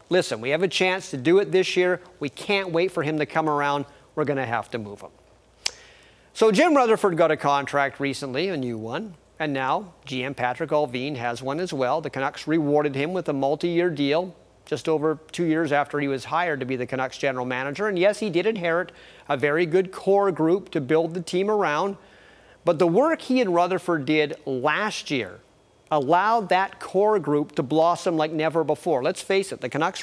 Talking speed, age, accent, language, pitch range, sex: 210 wpm, 40-59, American, English, 145-185 Hz, male